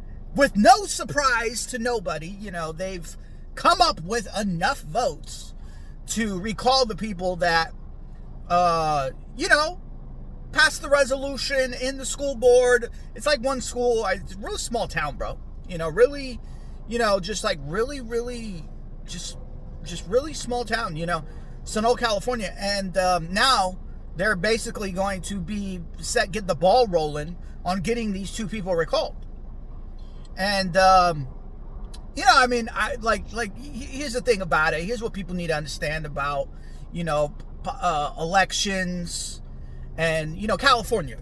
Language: English